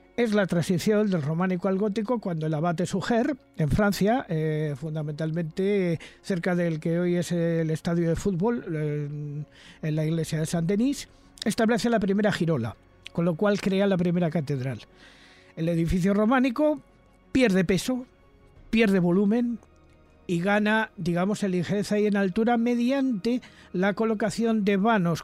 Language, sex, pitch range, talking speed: Spanish, male, 160-210 Hz, 145 wpm